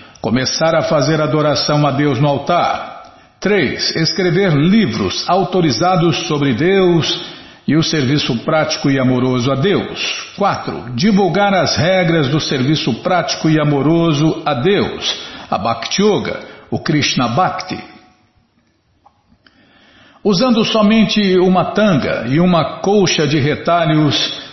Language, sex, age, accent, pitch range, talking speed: Portuguese, male, 60-79, Brazilian, 145-180 Hz, 115 wpm